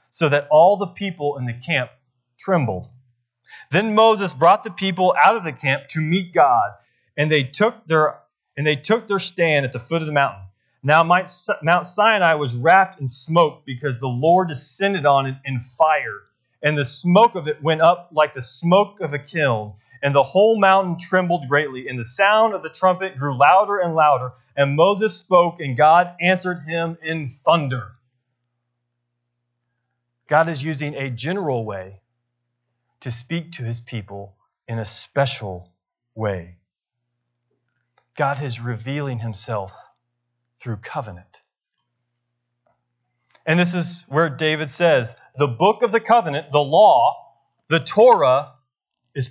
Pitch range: 120-180 Hz